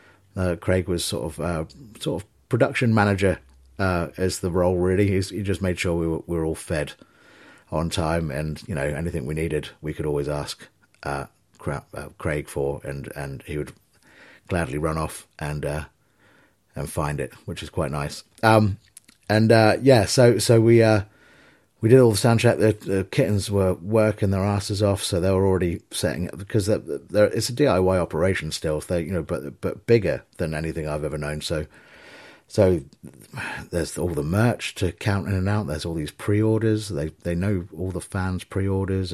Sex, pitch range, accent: male, 80-105 Hz, British